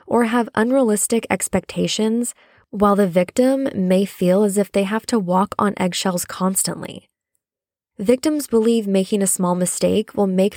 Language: English